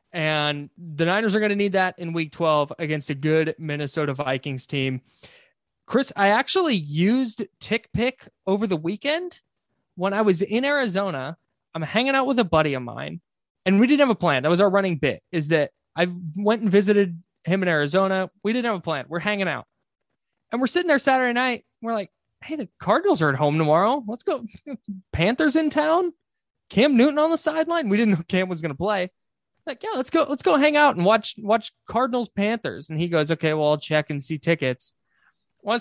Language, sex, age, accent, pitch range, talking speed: English, male, 20-39, American, 155-220 Hz, 205 wpm